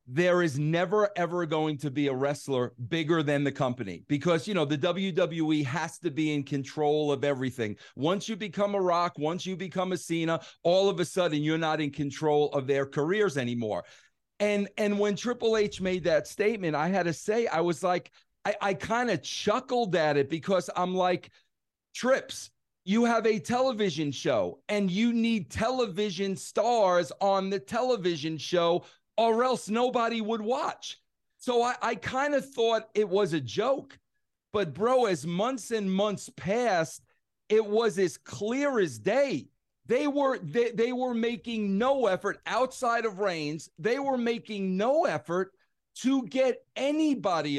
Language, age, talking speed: English, 40-59, 165 wpm